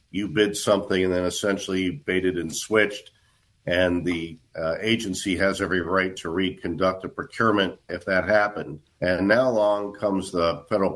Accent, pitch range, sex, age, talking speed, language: American, 90-110 Hz, male, 50-69, 160 wpm, English